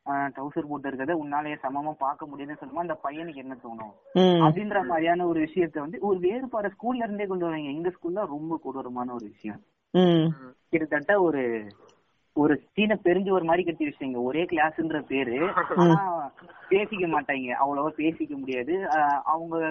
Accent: native